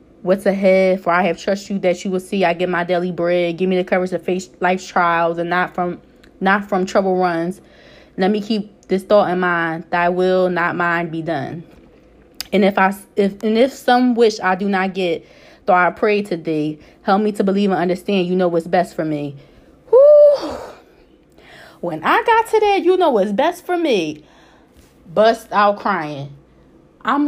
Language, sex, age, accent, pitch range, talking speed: English, female, 20-39, American, 180-260 Hz, 195 wpm